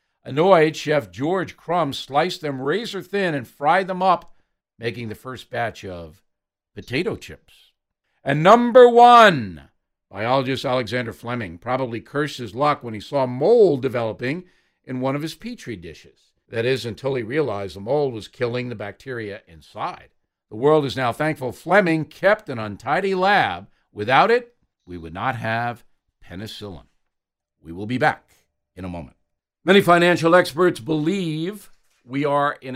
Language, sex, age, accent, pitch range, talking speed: English, male, 60-79, American, 115-170 Hz, 150 wpm